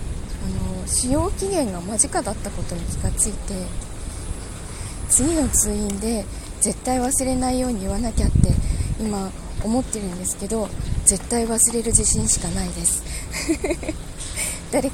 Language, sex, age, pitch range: Japanese, female, 20-39, 195-255 Hz